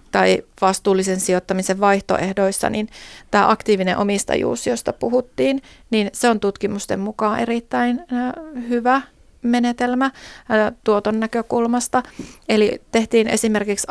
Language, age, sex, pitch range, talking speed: Finnish, 30-49, female, 195-230 Hz, 100 wpm